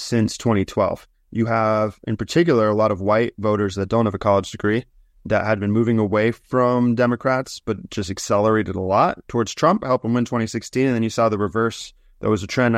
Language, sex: English, male